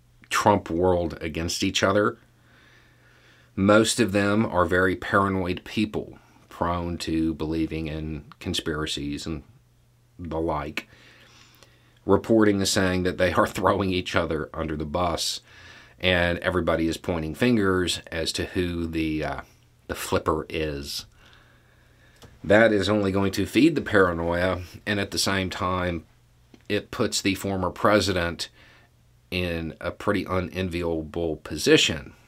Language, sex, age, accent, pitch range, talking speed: English, male, 40-59, American, 85-115 Hz, 125 wpm